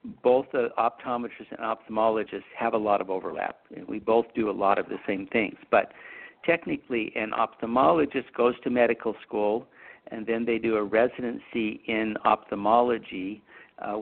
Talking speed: 155 wpm